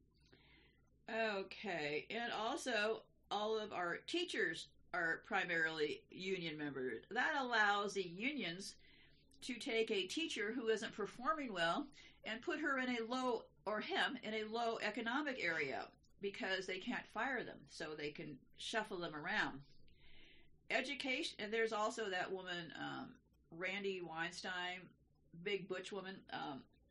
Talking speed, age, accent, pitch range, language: 135 wpm, 50-69, American, 195-255 Hz, English